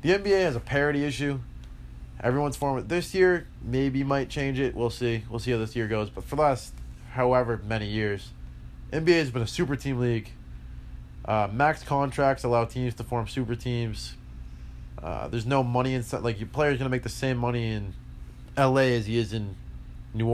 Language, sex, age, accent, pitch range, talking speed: English, male, 20-39, American, 100-130 Hz, 200 wpm